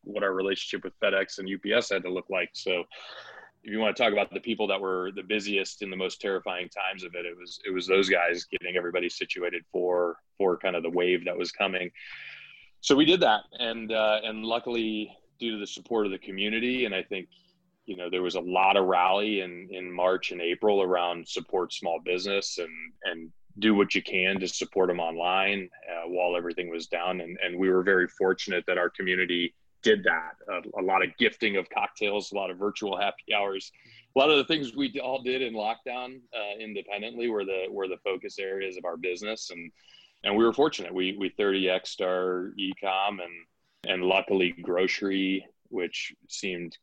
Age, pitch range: 20-39, 90-110 Hz